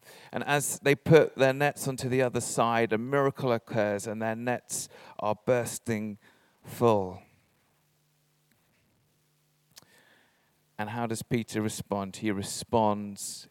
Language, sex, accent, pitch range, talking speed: English, male, British, 115-150 Hz, 115 wpm